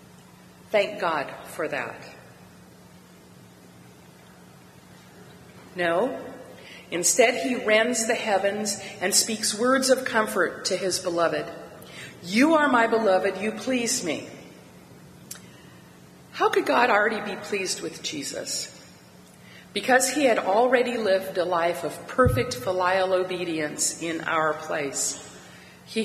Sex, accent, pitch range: female, American, 150-200 Hz